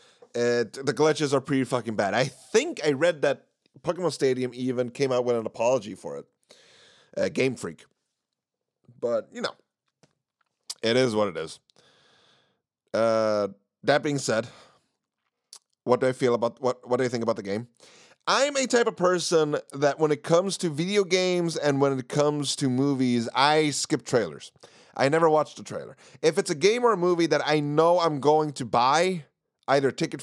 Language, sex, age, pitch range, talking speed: English, male, 30-49, 130-175 Hz, 185 wpm